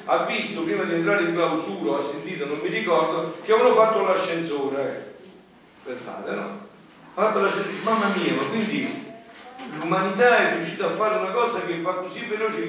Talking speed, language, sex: 185 wpm, Italian, male